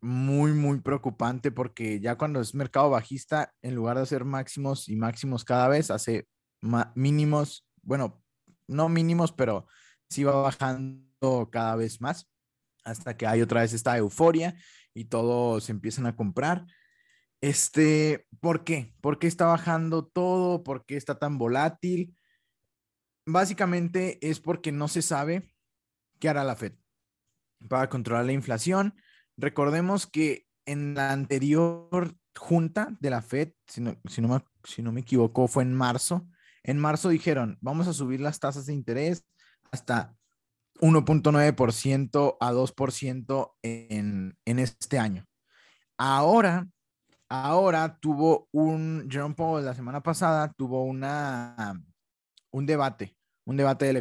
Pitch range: 120-160 Hz